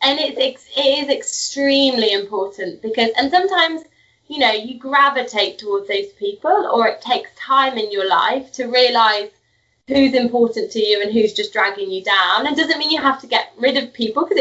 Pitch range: 210-265 Hz